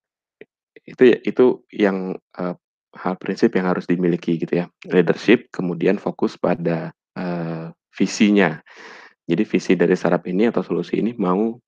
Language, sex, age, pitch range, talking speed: Indonesian, male, 20-39, 90-105 Hz, 135 wpm